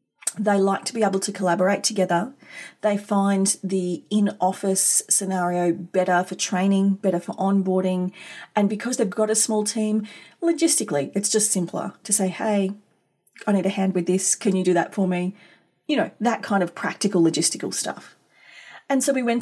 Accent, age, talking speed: Australian, 30-49, 175 wpm